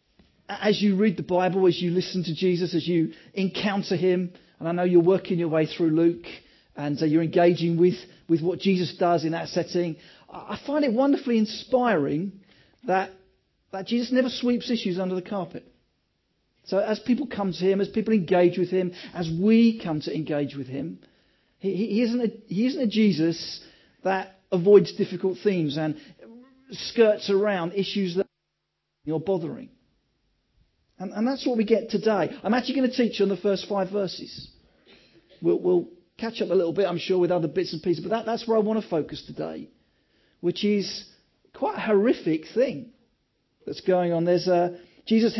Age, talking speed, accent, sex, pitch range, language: 40-59, 180 wpm, British, male, 175-220 Hz, English